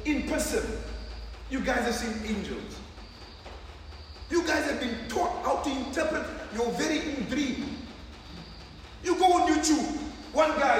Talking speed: 140 wpm